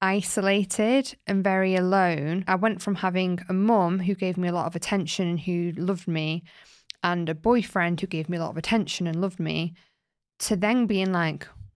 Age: 20-39